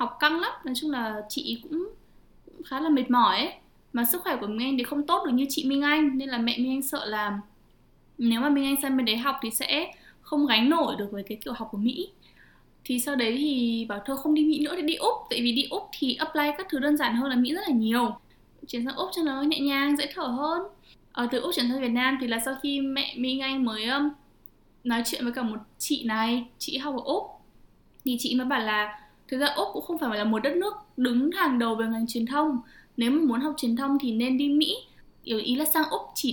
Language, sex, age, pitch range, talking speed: Vietnamese, female, 10-29, 235-295 Hz, 255 wpm